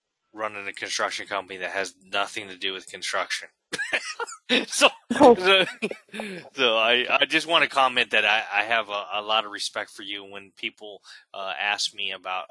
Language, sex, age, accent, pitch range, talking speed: English, male, 20-39, American, 95-140 Hz, 180 wpm